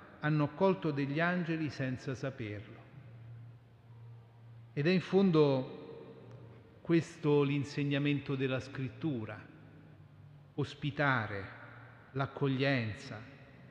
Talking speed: 70 wpm